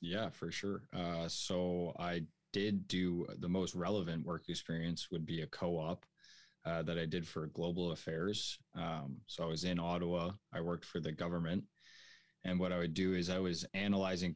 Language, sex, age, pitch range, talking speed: English, male, 20-39, 80-90 Hz, 180 wpm